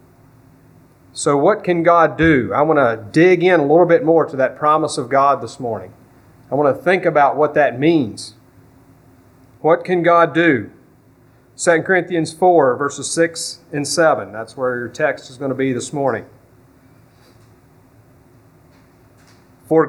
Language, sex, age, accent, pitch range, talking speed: English, male, 40-59, American, 125-165 Hz, 155 wpm